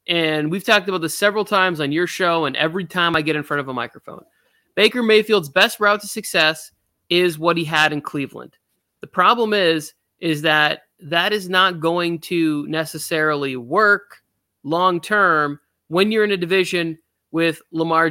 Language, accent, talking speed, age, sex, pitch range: English, American, 170 wpm, 30-49, male, 150-190 Hz